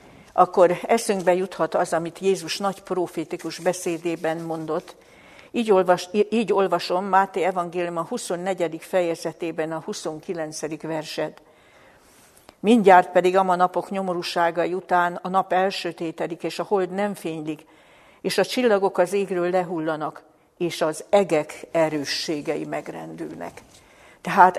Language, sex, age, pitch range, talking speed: Hungarian, female, 60-79, 165-190 Hz, 115 wpm